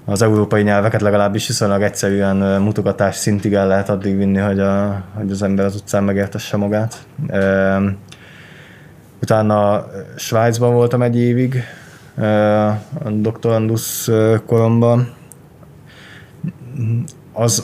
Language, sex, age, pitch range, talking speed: Hungarian, male, 20-39, 95-110 Hz, 100 wpm